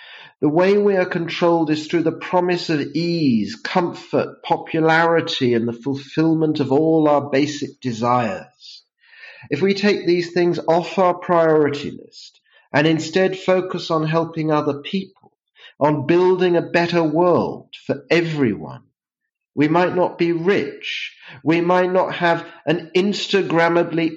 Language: English